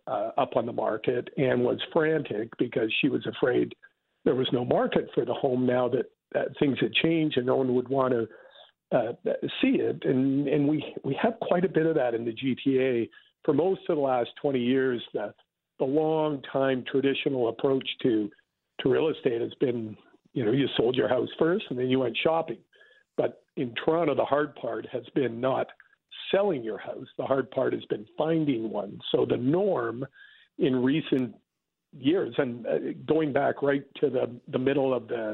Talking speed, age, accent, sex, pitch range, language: 190 wpm, 50-69, American, male, 125-155 Hz, English